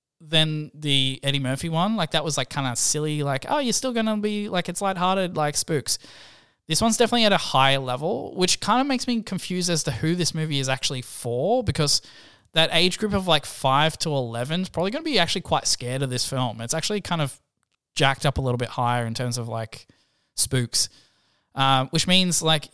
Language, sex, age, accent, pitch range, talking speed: English, male, 10-29, Australian, 130-170 Hz, 220 wpm